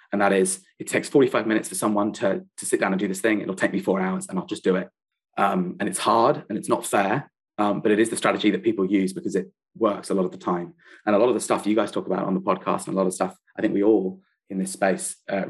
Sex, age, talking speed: male, 20-39, 300 wpm